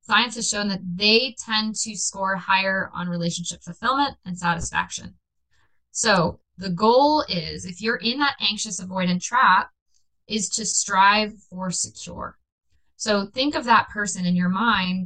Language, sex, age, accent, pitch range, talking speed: English, female, 20-39, American, 180-225 Hz, 150 wpm